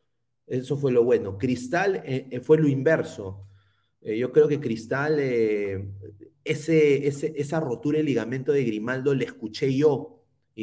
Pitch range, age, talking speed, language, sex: 115-165 Hz, 30-49, 150 wpm, Spanish, male